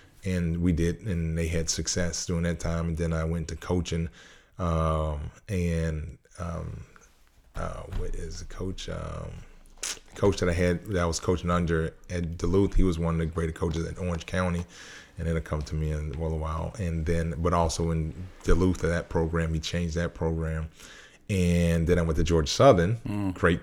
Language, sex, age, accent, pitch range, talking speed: English, male, 30-49, American, 80-95 Hz, 195 wpm